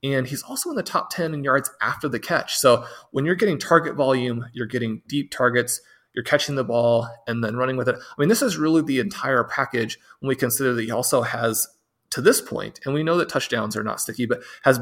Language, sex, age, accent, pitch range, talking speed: English, male, 30-49, American, 115-145 Hz, 240 wpm